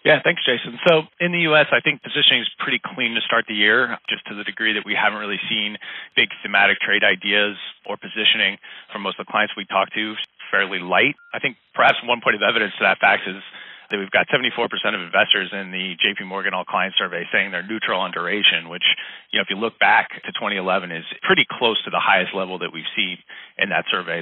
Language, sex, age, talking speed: English, male, 30-49, 230 wpm